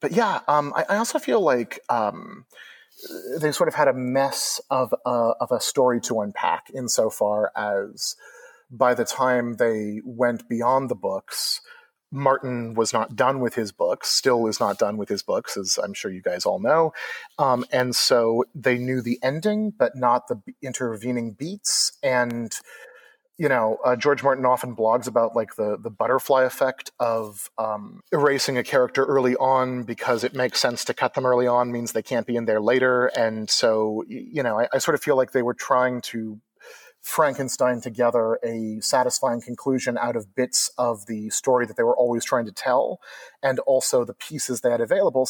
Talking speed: 185 wpm